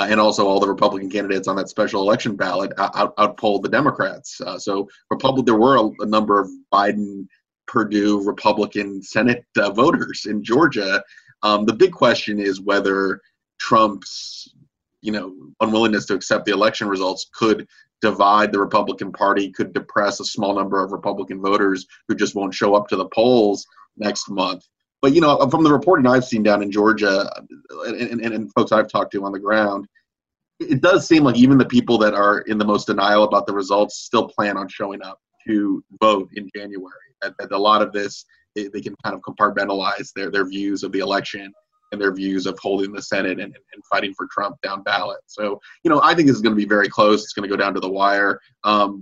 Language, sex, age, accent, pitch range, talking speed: English, male, 30-49, American, 100-110 Hz, 200 wpm